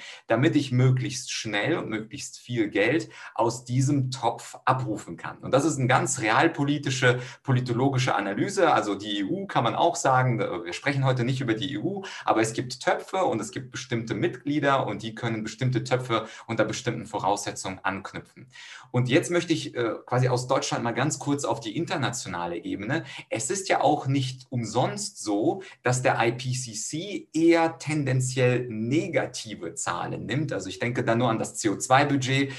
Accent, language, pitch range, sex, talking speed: German, German, 115-145 Hz, male, 165 wpm